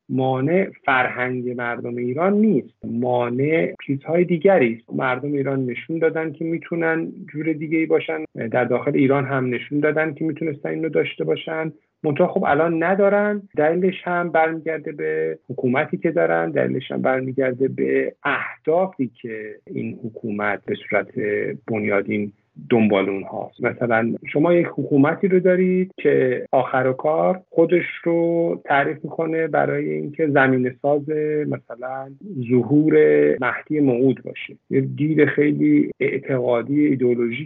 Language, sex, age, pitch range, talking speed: Persian, male, 50-69, 120-155 Hz, 130 wpm